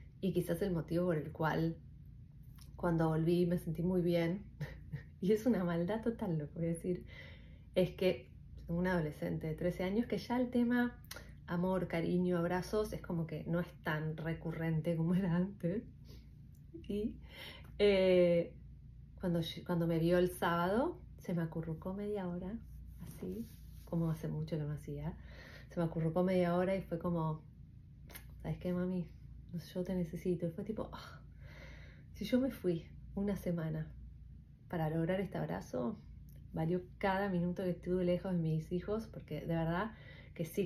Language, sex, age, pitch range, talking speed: Spanish, female, 30-49, 165-200 Hz, 160 wpm